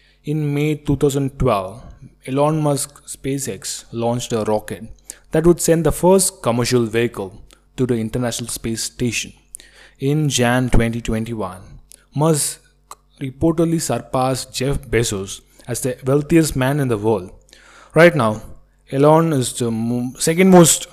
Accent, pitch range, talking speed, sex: Indian, 115-150 Hz, 125 wpm, male